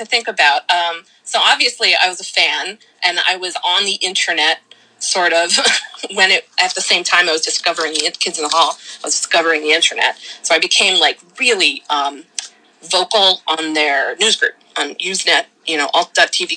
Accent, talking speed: American, 190 wpm